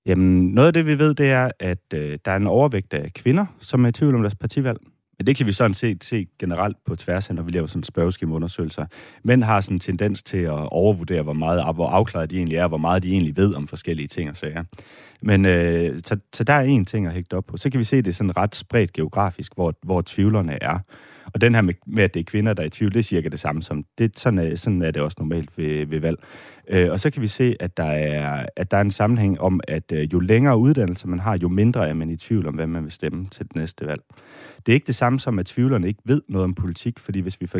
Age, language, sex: 30-49, Danish, male